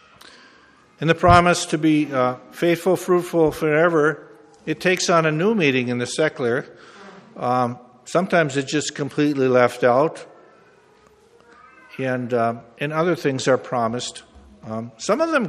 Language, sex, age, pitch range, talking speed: English, male, 50-69, 120-155 Hz, 140 wpm